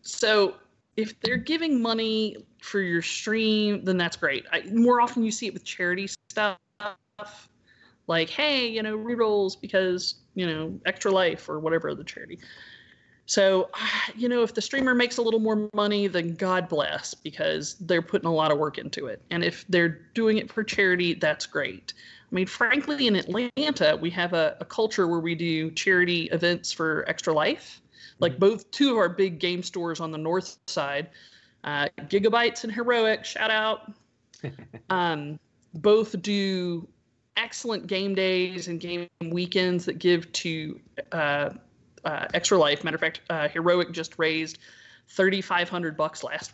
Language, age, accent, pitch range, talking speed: English, 30-49, American, 165-215 Hz, 165 wpm